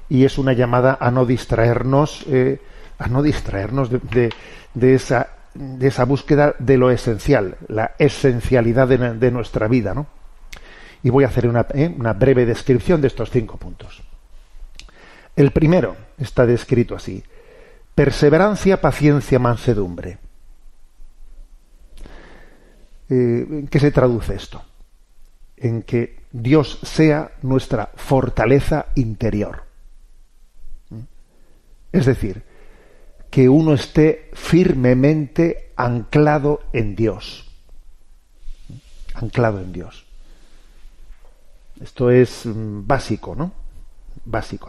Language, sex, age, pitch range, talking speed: Spanish, male, 40-59, 110-135 Hz, 105 wpm